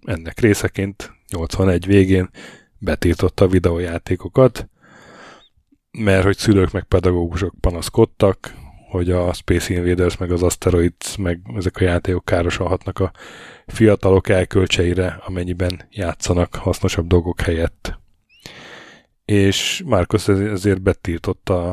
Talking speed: 100 wpm